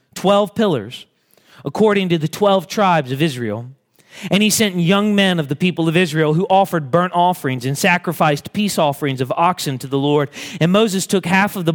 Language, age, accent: English, 30-49, American